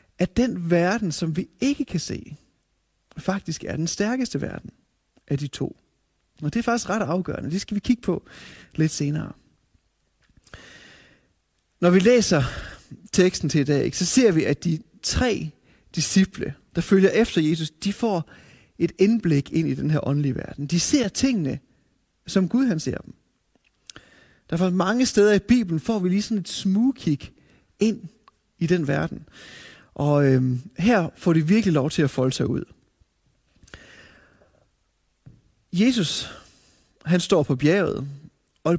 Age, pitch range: 30-49, 150-210 Hz